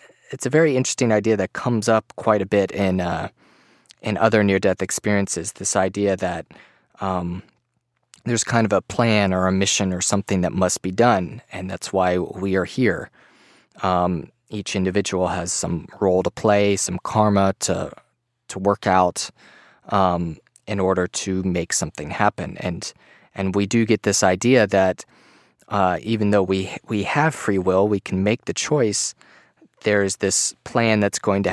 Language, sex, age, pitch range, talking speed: English, male, 20-39, 90-105 Hz, 170 wpm